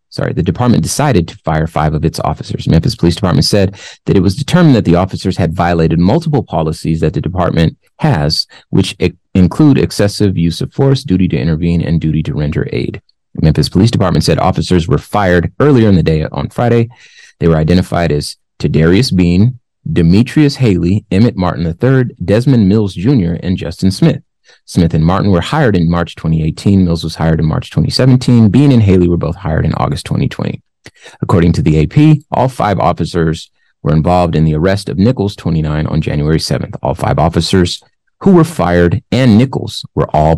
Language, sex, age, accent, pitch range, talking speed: English, male, 30-49, American, 85-120 Hz, 185 wpm